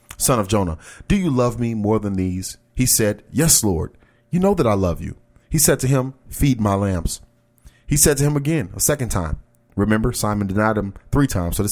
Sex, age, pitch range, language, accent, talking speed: male, 30-49, 100-135 Hz, English, American, 220 wpm